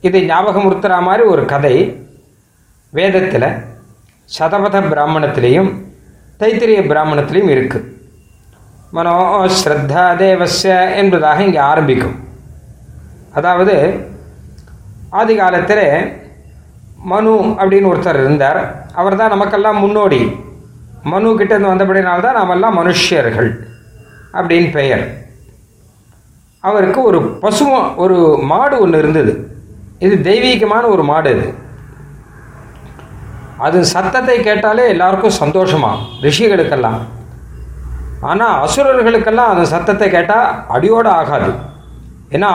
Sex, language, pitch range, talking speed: male, Tamil, 125-205 Hz, 80 wpm